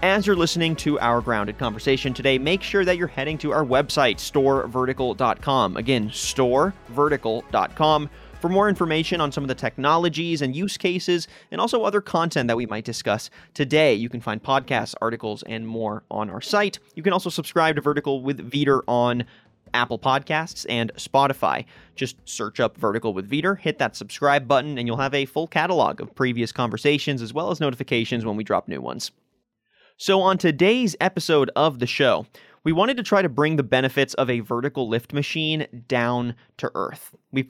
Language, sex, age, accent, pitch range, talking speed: English, male, 30-49, American, 120-160 Hz, 180 wpm